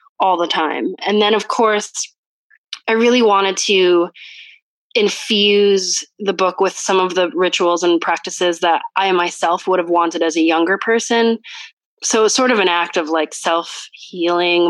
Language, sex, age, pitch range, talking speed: English, female, 20-39, 170-205 Hz, 165 wpm